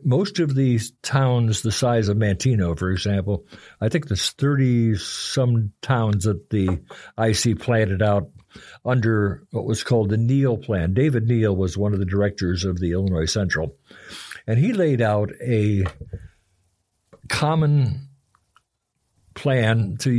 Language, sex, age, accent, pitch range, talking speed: English, male, 60-79, American, 100-130 Hz, 145 wpm